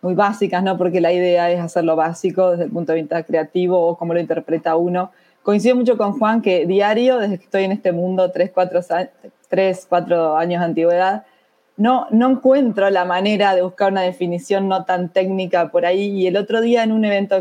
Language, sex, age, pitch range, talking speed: English, female, 20-39, 180-215 Hz, 205 wpm